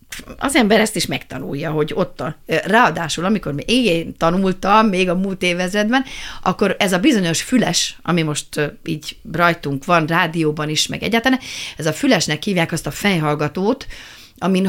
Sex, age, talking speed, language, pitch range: female, 40-59, 155 wpm, Hungarian, 155-195 Hz